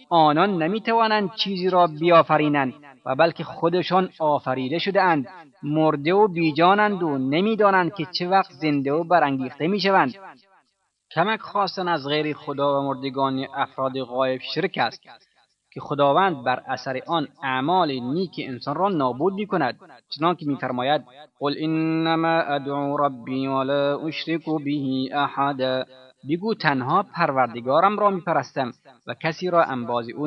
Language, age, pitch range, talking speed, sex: Persian, 30-49, 135-175 Hz, 125 wpm, male